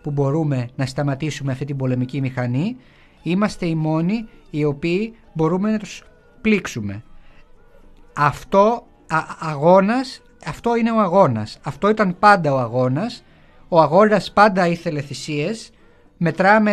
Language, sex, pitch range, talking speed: Greek, male, 145-220 Hz, 120 wpm